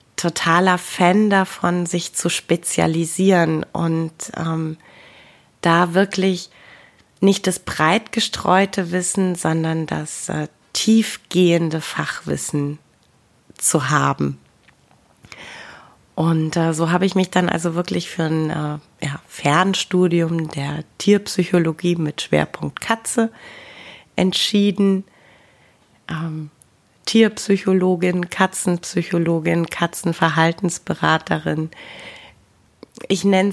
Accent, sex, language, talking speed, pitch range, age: German, female, German, 85 wpm, 160-190 Hz, 30-49